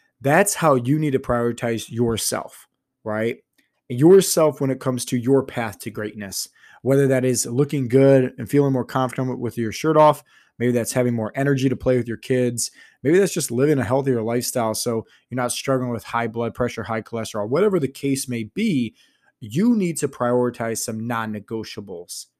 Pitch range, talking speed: 120-150 Hz, 185 wpm